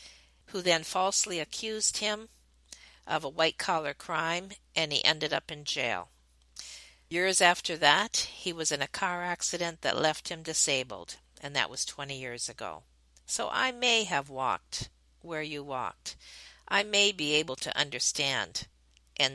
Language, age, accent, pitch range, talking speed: English, 50-69, American, 120-160 Hz, 150 wpm